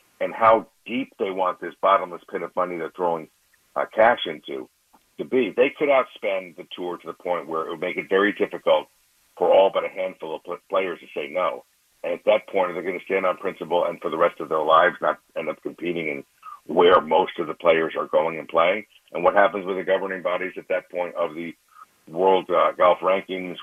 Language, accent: English, American